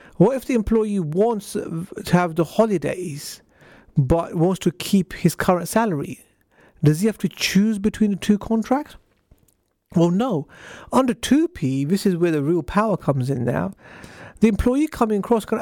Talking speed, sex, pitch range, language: 165 wpm, male, 160-215 Hz, English